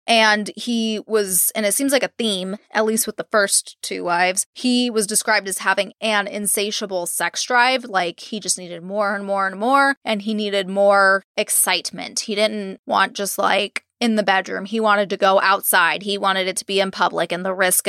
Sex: female